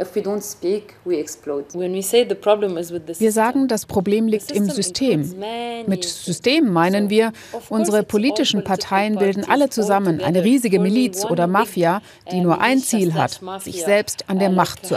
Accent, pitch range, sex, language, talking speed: German, 180-220 Hz, female, German, 130 wpm